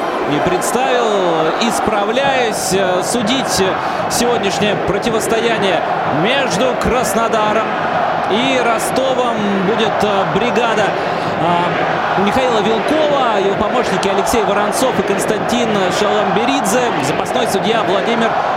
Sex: male